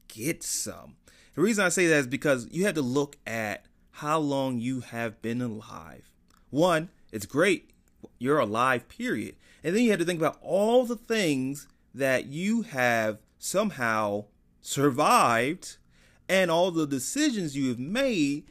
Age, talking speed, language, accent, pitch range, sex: 30-49, 155 wpm, English, American, 110-170 Hz, male